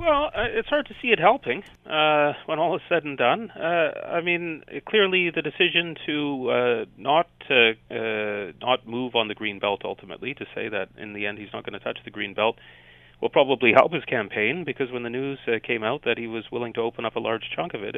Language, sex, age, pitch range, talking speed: English, male, 30-49, 100-130 Hz, 235 wpm